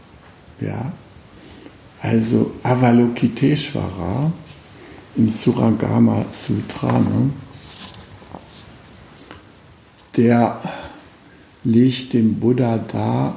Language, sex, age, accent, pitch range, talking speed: German, male, 60-79, German, 100-130 Hz, 50 wpm